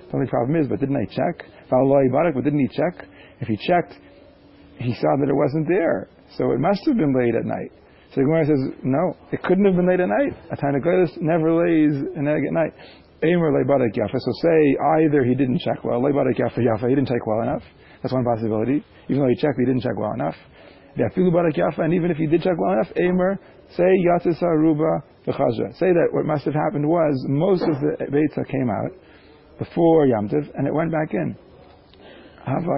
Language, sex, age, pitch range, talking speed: English, male, 40-59, 130-160 Hz, 185 wpm